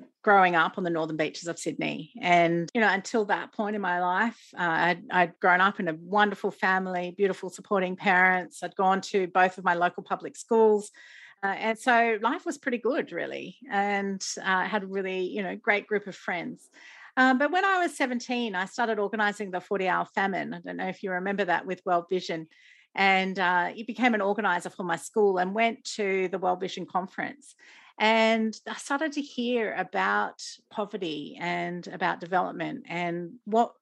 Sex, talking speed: female, 190 wpm